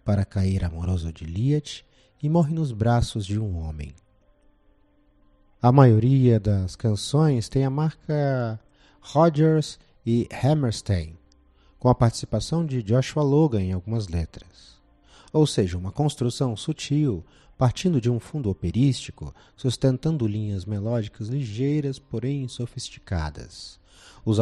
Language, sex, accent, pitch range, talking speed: Portuguese, male, Brazilian, 95-135 Hz, 120 wpm